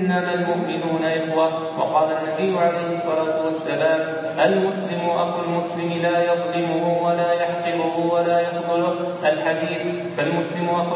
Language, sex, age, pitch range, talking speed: Arabic, male, 30-49, 165-175 Hz, 110 wpm